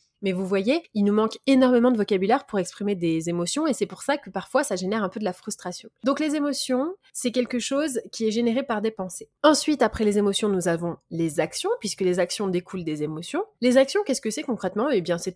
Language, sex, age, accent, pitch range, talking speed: French, female, 20-39, French, 190-270 Hz, 240 wpm